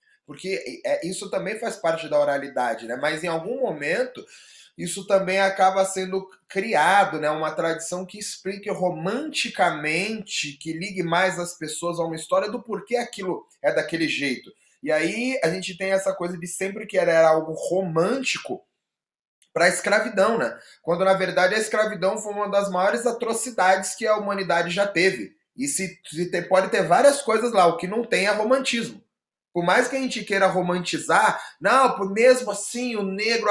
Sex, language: male, Portuguese